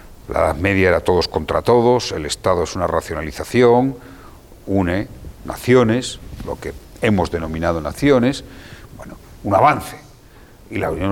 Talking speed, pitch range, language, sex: 135 wpm, 105-145 Hz, Portuguese, male